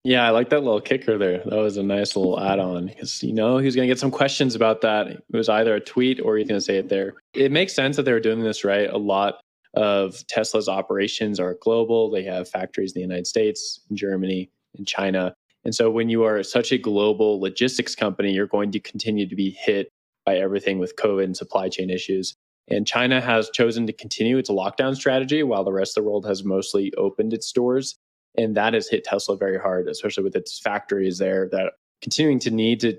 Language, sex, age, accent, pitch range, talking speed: English, male, 20-39, American, 100-120 Hz, 225 wpm